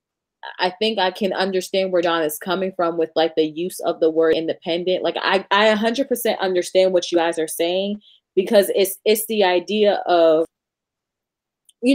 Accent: American